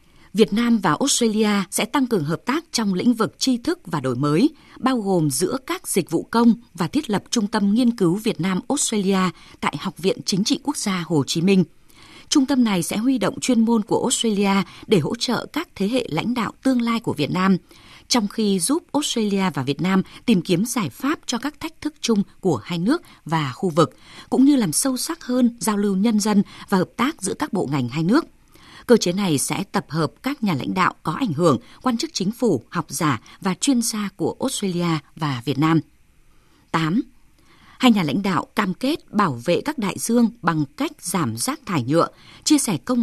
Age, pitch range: 20-39, 180-255 Hz